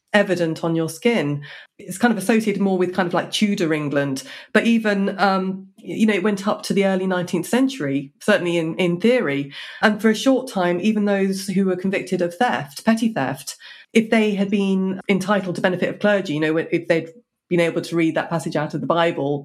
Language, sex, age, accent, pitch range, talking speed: English, female, 30-49, British, 170-215 Hz, 215 wpm